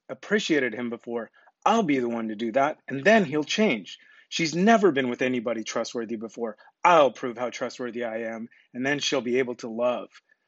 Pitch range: 115-140 Hz